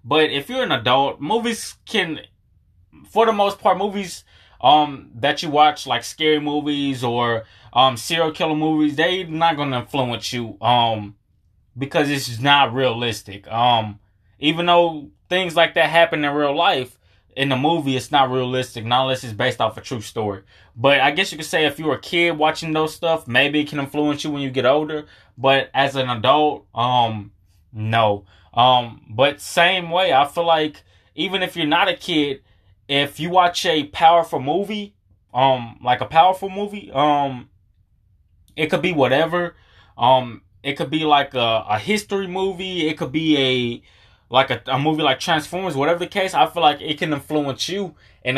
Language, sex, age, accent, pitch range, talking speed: English, male, 20-39, American, 120-155 Hz, 180 wpm